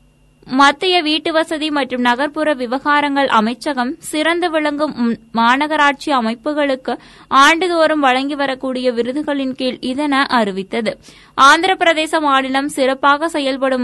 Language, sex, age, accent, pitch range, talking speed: Tamil, female, 20-39, native, 255-310 Hz, 100 wpm